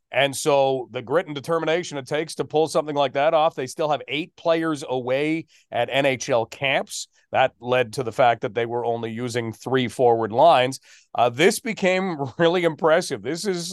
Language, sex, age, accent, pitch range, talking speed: English, male, 40-59, American, 125-155 Hz, 190 wpm